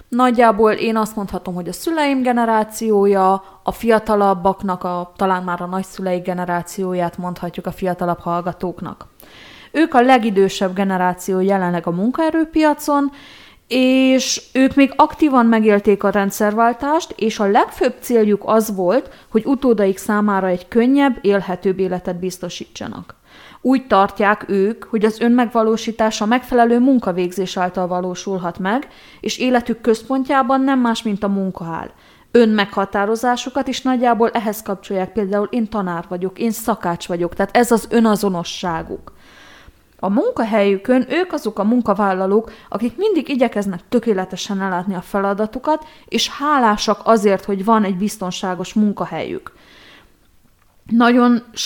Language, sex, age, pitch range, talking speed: Hungarian, female, 20-39, 190-235 Hz, 120 wpm